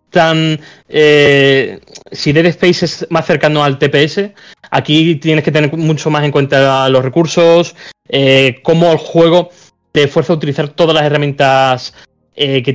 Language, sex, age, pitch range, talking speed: Spanish, male, 20-39, 135-170 Hz, 155 wpm